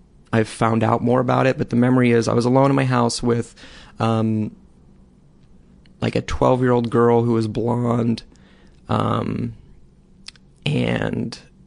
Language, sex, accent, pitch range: English, male, American, 110-125 Hz